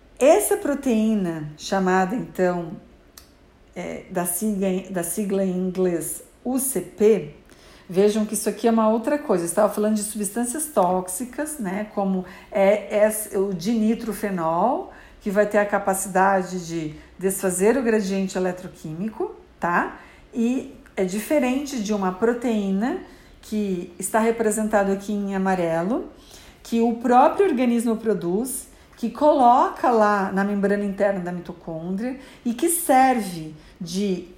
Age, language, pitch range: 50-69, Portuguese, 190-255 Hz